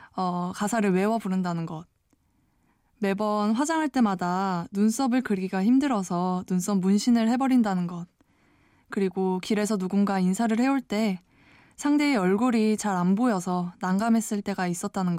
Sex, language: female, Korean